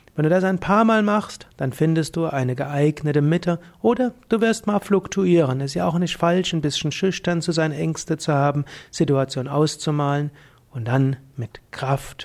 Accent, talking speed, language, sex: German, 185 wpm, German, male